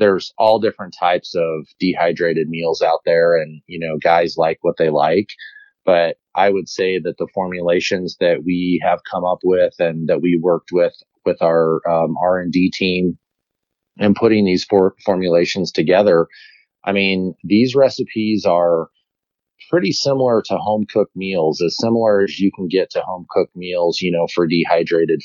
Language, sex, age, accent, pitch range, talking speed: English, male, 30-49, American, 85-105 Hz, 175 wpm